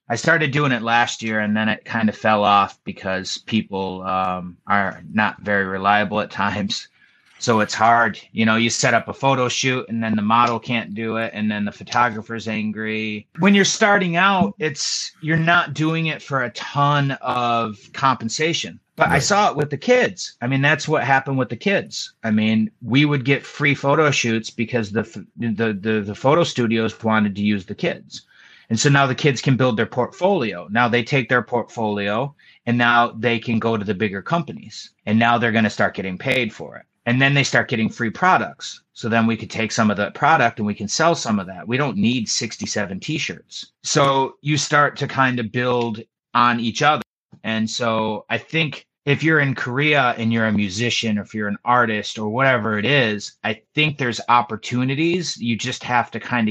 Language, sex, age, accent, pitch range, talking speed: English, male, 30-49, American, 110-140 Hz, 205 wpm